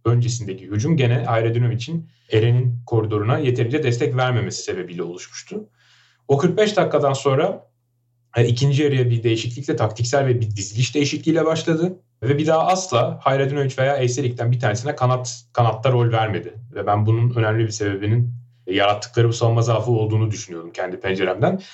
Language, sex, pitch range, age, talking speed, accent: Turkish, male, 115-135 Hz, 30-49, 145 wpm, native